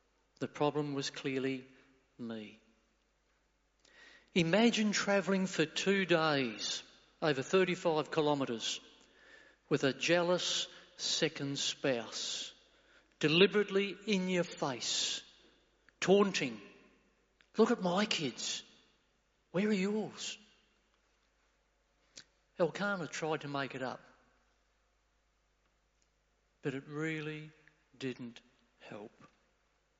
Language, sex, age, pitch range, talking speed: English, male, 50-69, 140-185 Hz, 80 wpm